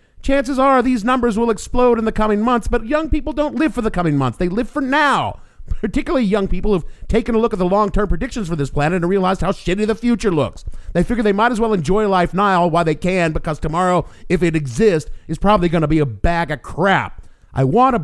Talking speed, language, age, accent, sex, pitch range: 245 wpm, English, 50-69, American, male, 130-215 Hz